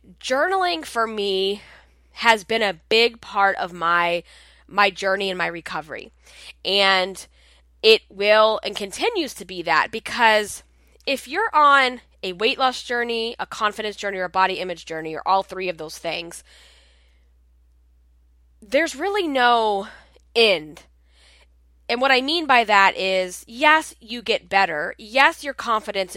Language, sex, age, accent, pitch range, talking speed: English, female, 10-29, American, 170-240 Hz, 145 wpm